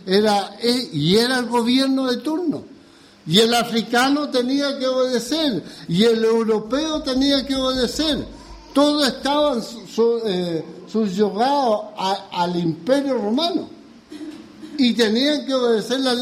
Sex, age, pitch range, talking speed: male, 60-79, 185-255 Hz, 120 wpm